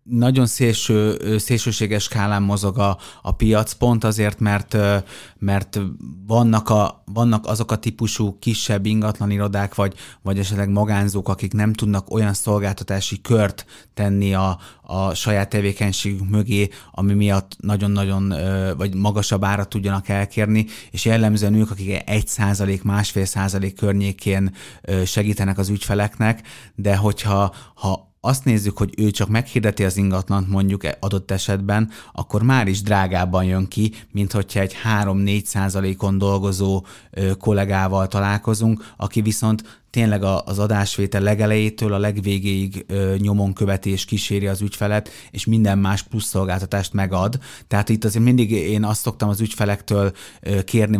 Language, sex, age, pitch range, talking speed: Hungarian, male, 30-49, 100-110 Hz, 130 wpm